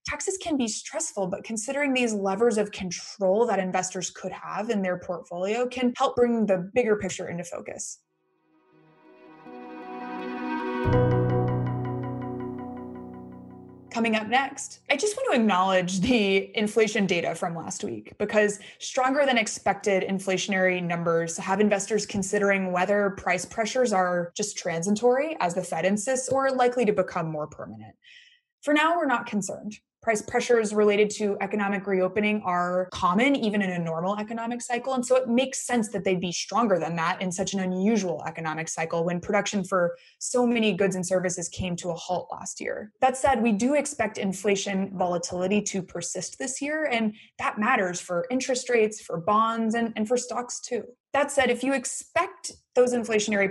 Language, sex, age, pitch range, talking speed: English, female, 20-39, 180-245 Hz, 165 wpm